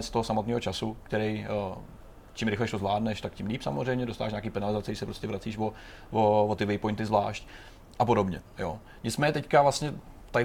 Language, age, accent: Czech, 30-49, native